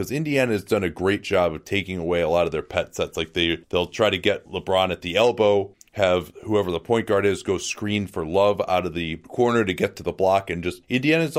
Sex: male